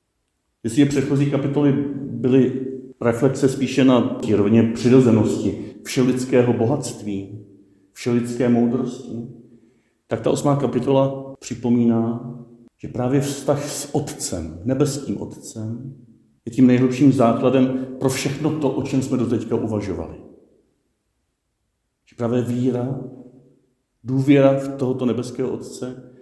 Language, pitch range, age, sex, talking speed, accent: Czech, 115-135 Hz, 50-69, male, 110 wpm, native